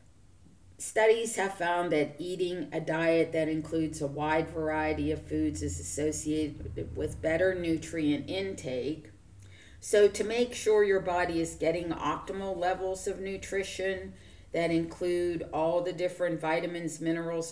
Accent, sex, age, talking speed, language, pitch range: American, female, 40-59, 135 wpm, English, 150-175 Hz